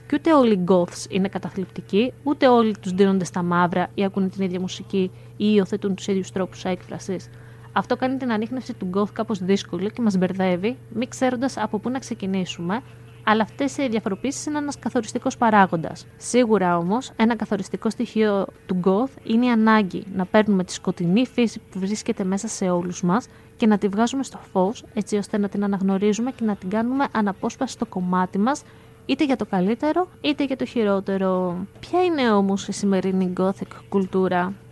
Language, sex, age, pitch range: Greek, female, 20-39, 185-225 Hz